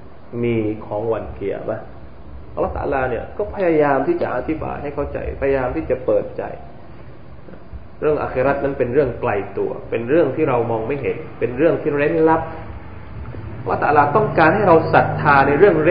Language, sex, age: Thai, male, 20-39